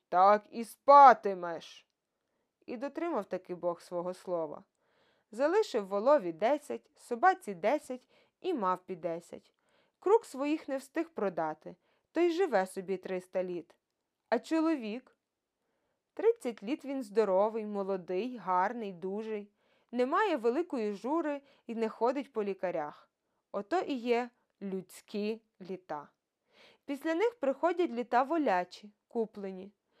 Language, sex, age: Ukrainian, female, 20-39